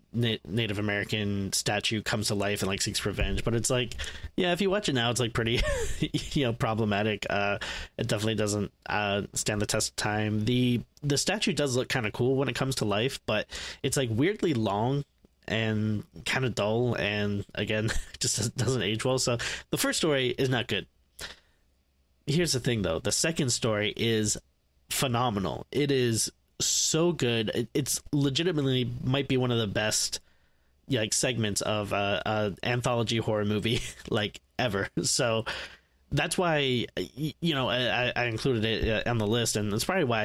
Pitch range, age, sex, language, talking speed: 100-125 Hz, 20-39, male, English, 175 wpm